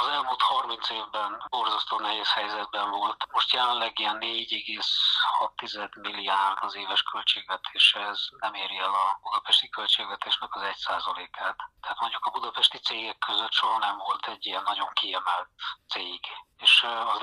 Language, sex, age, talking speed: Hungarian, male, 40-59, 140 wpm